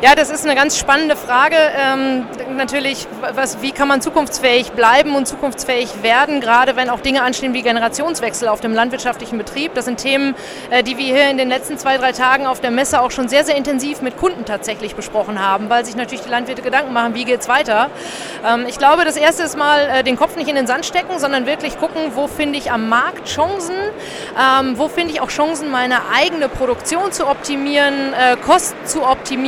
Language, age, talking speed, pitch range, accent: German, 30-49, 200 wpm, 245-290 Hz, German